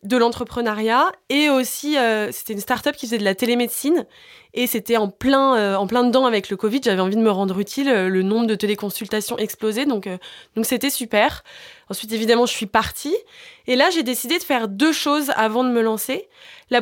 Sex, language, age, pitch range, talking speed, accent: female, French, 20-39, 220-275 Hz, 210 wpm, French